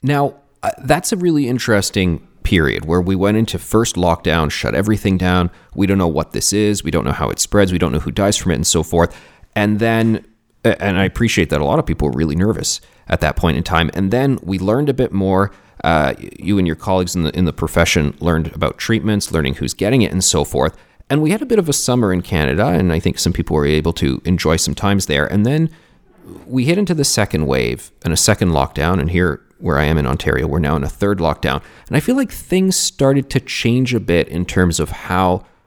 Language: English